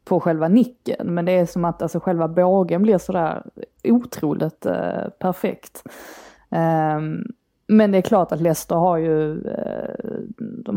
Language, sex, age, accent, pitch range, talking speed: Swedish, female, 20-39, native, 160-185 Hz, 150 wpm